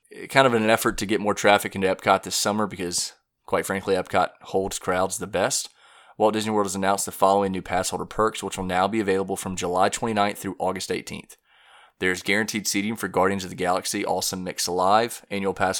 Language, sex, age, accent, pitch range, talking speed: English, male, 20-39, American, 95-105 Hz, 210 wpm